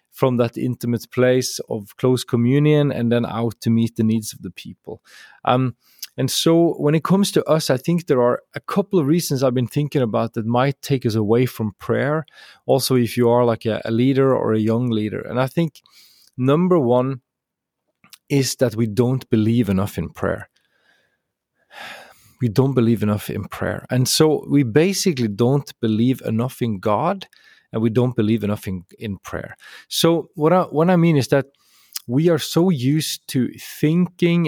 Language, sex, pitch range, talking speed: English, male, 115-145 Hz, 185 wpm